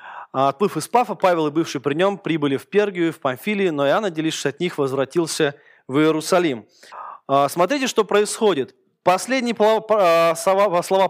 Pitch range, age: 150-195 Hz, 20-39